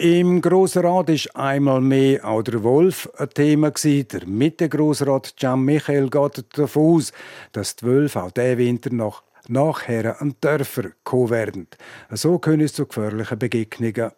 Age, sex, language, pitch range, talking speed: 50-69, male, German, 115-150 Hz, 145 wpm